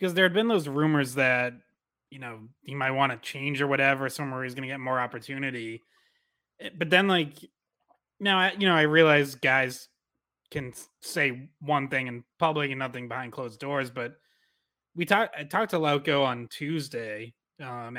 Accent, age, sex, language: American, 20-39, male, English